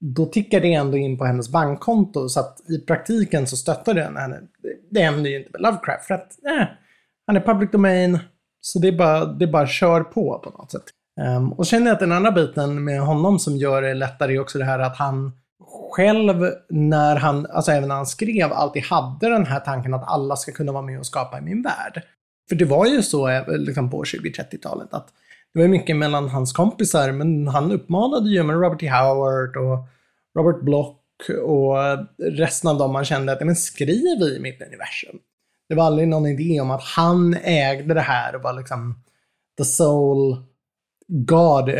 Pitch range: 135-175 Hz